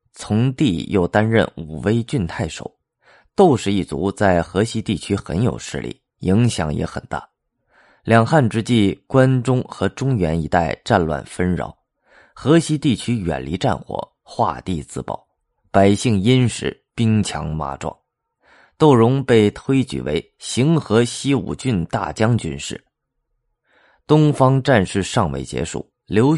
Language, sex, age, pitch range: Chinese, male, 30-49, 90-130 Hz